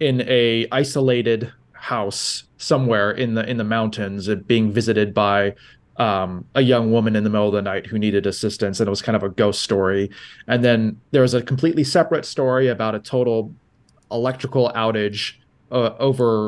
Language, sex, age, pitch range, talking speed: English, male, 30-49, 105-130 Hz, 180 wpm